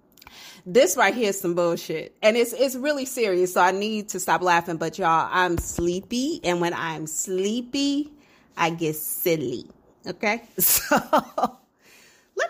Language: English